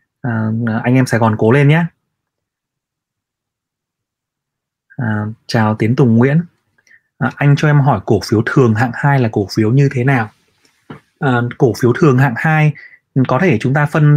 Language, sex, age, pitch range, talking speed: Vietnamese, male, 20-39, 115-150 Hz, 170 wpm